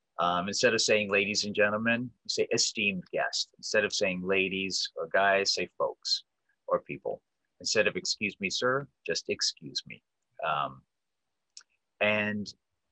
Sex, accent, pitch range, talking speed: male, American, 90-130 Hz, 145 wpm